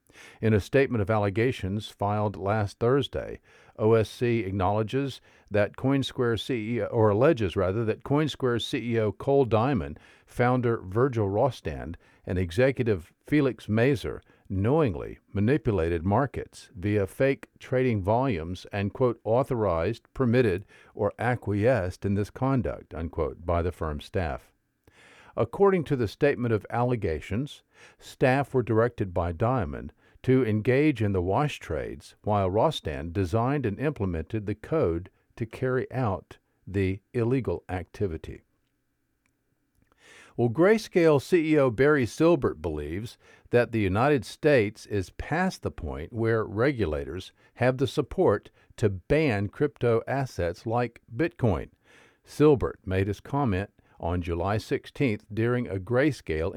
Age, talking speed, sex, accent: 50-69, 120 wpm, male, American